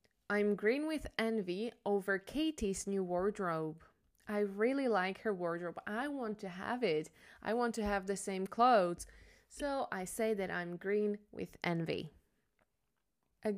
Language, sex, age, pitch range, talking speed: Slovak, female, 20-39, 185-225 Hz, 150 wpm